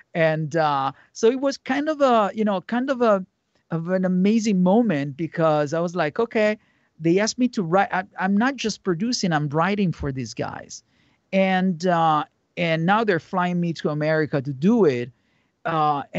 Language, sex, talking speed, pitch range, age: English, male, 180 wpm, 160-225 Hz, 40-59